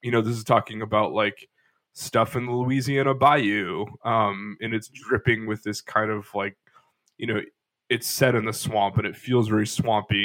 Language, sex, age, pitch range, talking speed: English, male, 20-39, 105-125 Hz, 195 wpm